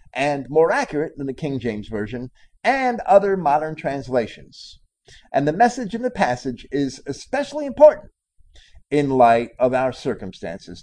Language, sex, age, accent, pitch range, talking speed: English, male, 50-69, American, 140-210 Hz, 145 wpm